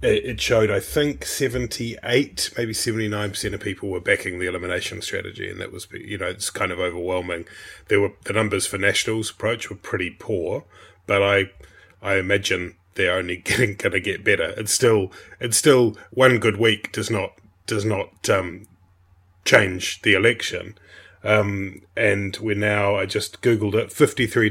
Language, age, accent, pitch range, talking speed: English, 30-49, British, 95-115 Hz, 165 wpm